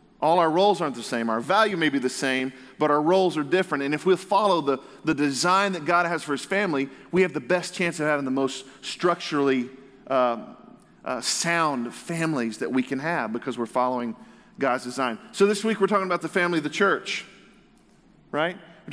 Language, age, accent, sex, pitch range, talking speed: English, 40-59, American, male, 140-180 Hz, 210 wpm